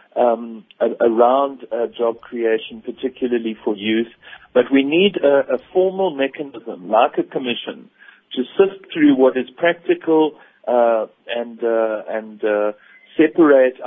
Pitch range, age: 120-165 Hz, 50-69